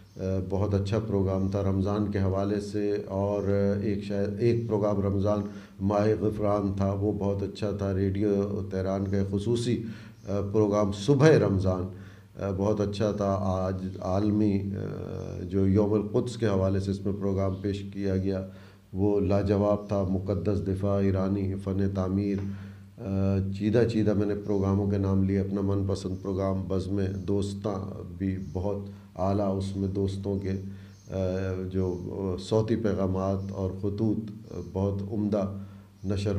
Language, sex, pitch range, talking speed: Urdu, male, 95-105 Hz, 135 wpm